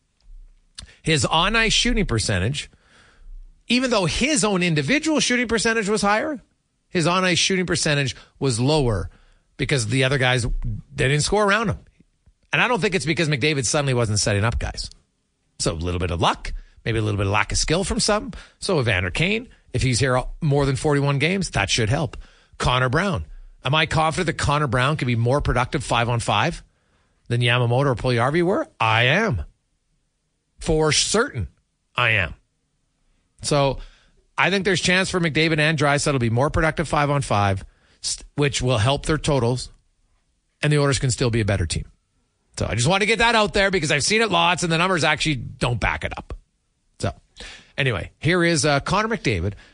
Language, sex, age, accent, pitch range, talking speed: English, male, 40-59, American, 115-170 Hz, 185 wpm